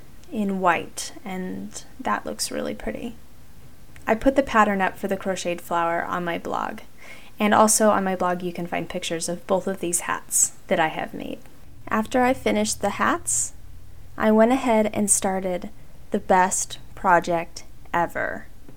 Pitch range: 185-235 Hz